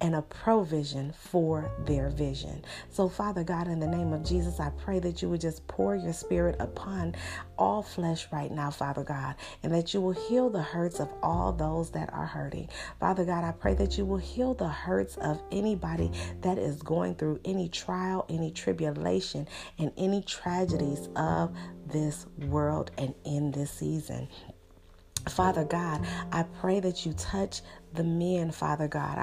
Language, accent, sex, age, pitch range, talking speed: English, American, female, 40-59, 140-180 Hz, 170 wpm